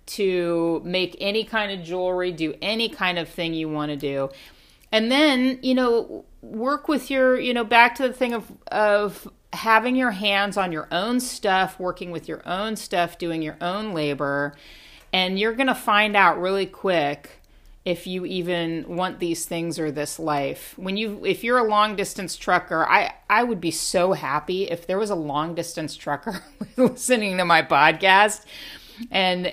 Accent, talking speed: American, 175 wpm